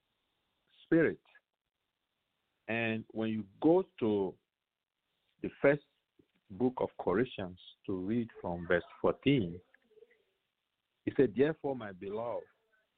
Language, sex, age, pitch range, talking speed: English, male, 50-69, 100-135 Hz, 95 wpm